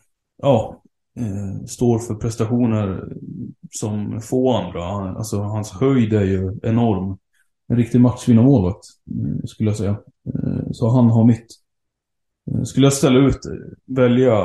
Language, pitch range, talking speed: Swedish, 100-130 Hz, 140 wpm